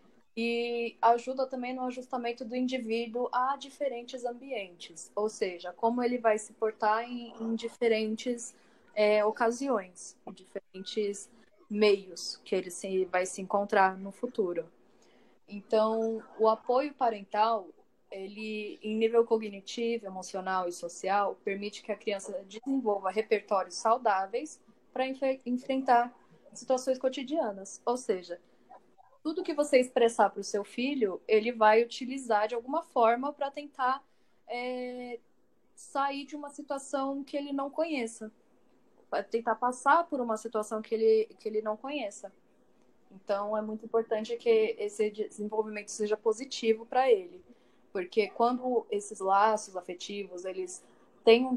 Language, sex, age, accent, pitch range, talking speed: Portuguese, female, 10-29, Brazilian, 205-255 Hz, 130 wpm